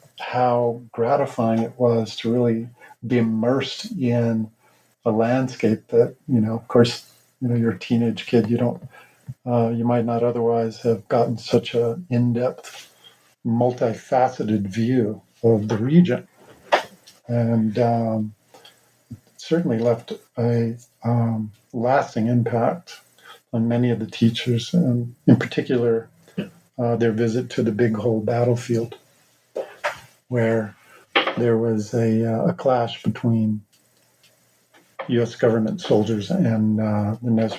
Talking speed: 125 wpm